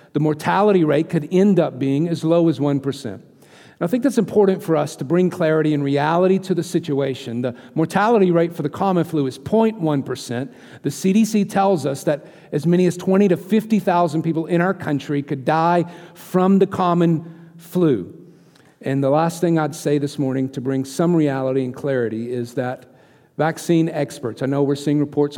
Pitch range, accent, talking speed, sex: 135-170 Hz, American, 185 wpm, male